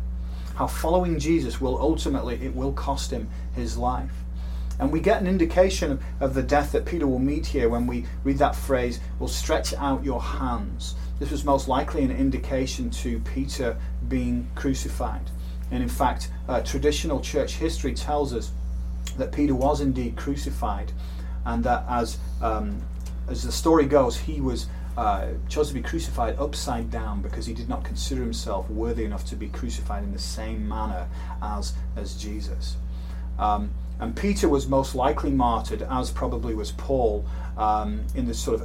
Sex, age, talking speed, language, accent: male, 30-49, 170 wpm, English, British